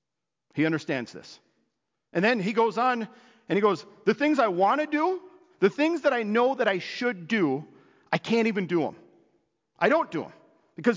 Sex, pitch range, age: male, 150-235 Hz, 40-59